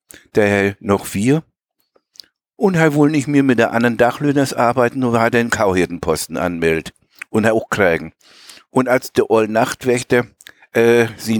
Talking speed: 155 wpm